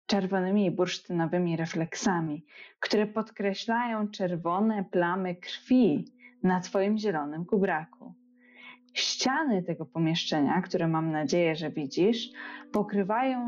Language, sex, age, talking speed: Polish, female, 20-39, 95 wpm